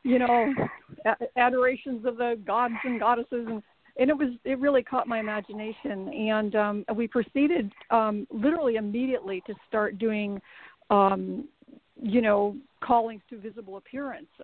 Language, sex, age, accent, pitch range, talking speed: English, female, 50-69, American, 205-245 Hz, 140 wpm